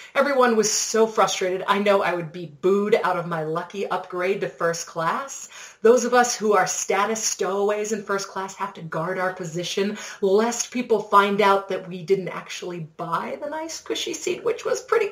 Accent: American